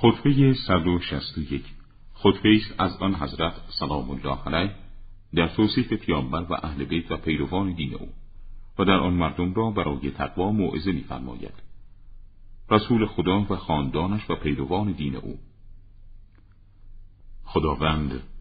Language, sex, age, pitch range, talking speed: Persian, male, 50-69, 70-95 Hz, 125 wpm